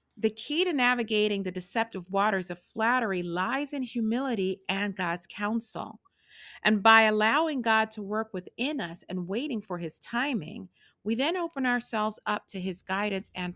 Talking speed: 165 wpm